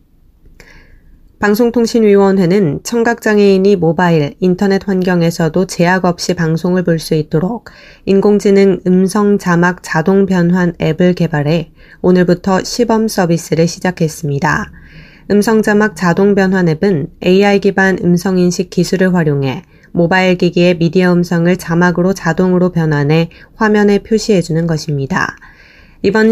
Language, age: Korean, 20-39